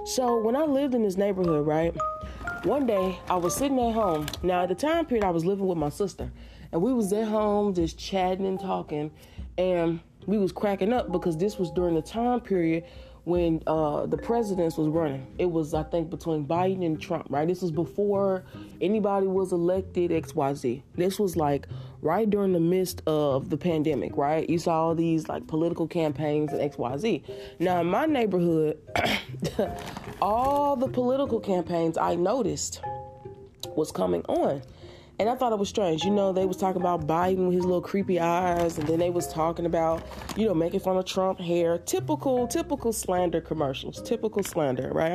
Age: 30-49